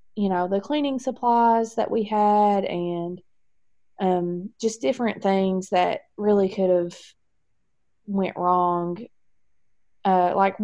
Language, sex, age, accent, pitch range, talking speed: English, female, 20-39, American, 180-225 Hz, 120 wpm